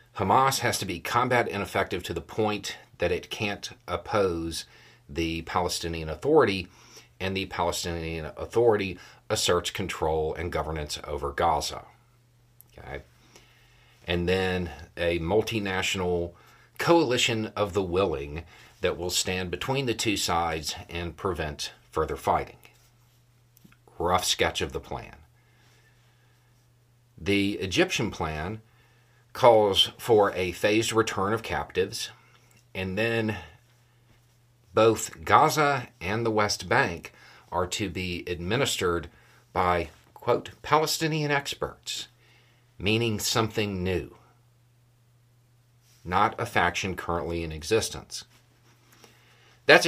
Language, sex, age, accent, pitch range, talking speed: English, male, 40-59, American, 90-120 Hz, 105 wpm